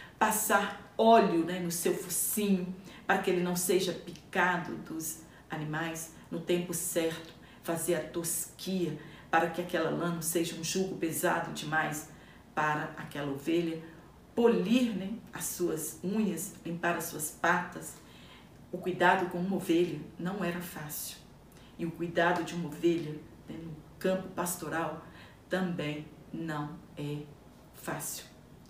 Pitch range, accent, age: 165-200 Hz, Brazilian, 40-59